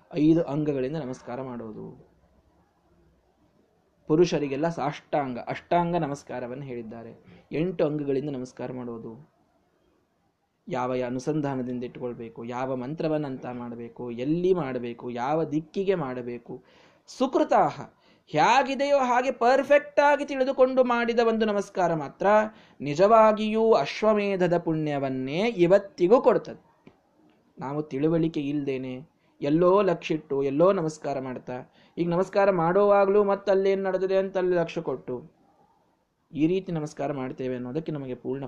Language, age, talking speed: Kannada, 20-39, 100 wpm